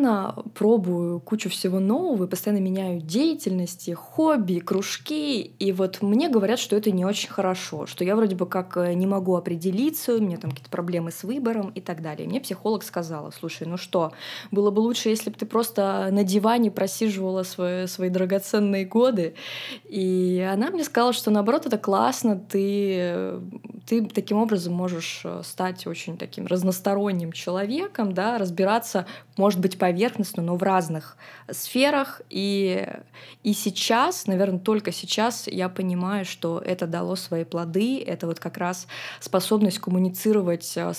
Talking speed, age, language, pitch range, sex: 150 wpm, 20-39, Russian, 180-210 Hz, female